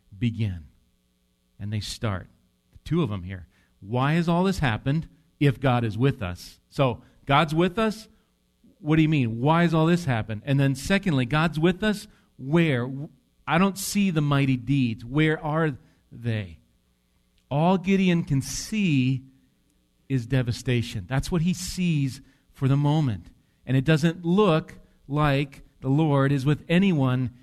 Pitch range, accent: 105-155 Hz, American